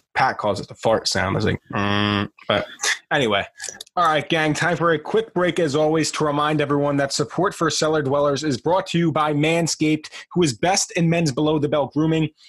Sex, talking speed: male, 210 wpm